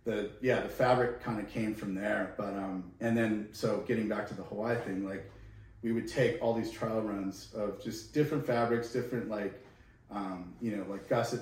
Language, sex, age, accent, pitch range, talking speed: English, male, 30-49, American, 100-115 Hz, 205 wpm